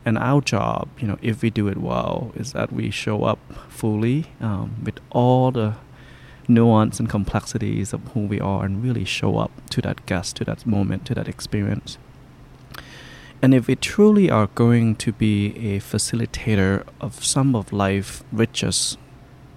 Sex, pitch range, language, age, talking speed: male, 105-130 Hz, English, 30-49, 170 wpm